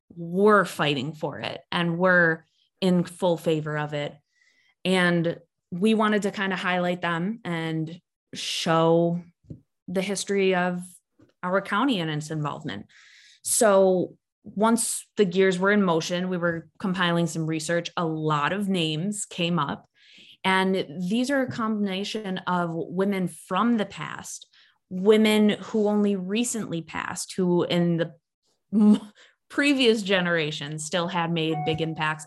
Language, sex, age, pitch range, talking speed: English, female, 20-39, 170-210 Hz, 135 wpm